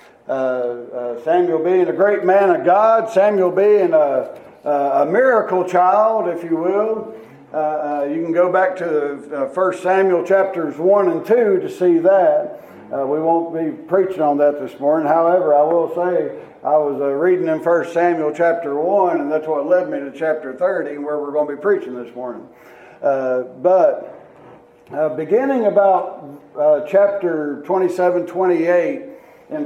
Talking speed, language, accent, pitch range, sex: 170 wpm, English, American, 155-205 Hz, male